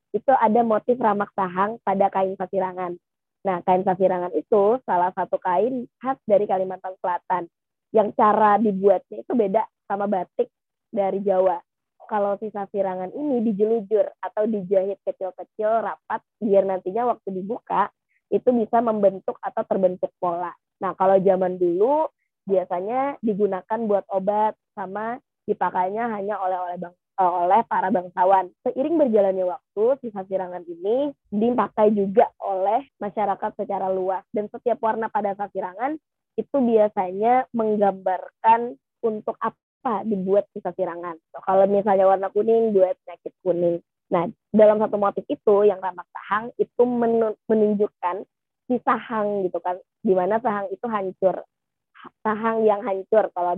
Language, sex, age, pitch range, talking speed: Indonesian, female, 20-39, 185-220 Hz, 135 wpm